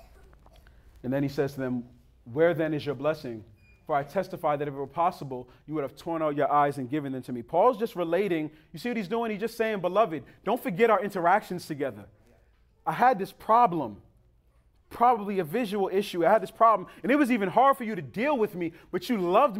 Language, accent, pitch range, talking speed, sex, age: English, American, 130-210 Hz, 225 wpm, male, 30-49